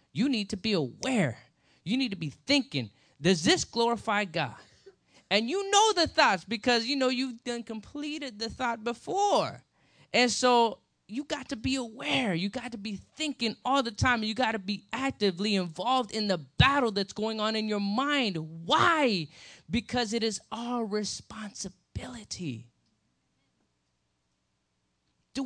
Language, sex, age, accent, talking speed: English, male, 20-39, American, 155 wpm